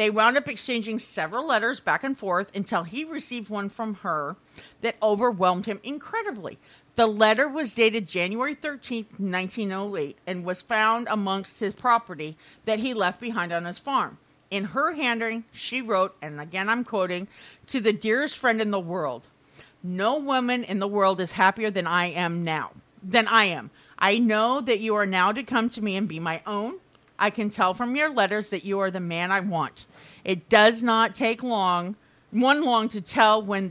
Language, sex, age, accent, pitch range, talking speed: English, female, 50-69, American, 190-235 Hz, 190 wpm